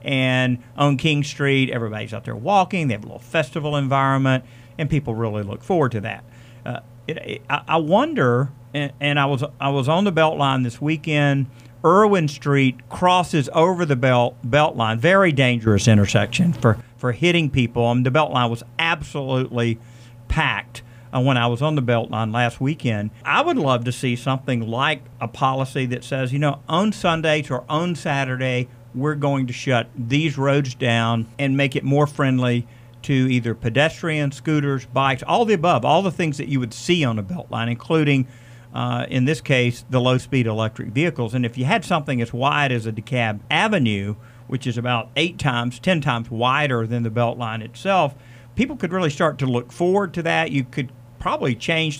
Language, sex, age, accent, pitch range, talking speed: English, male, 50-69, American, 120-150 Hz, 190 wpm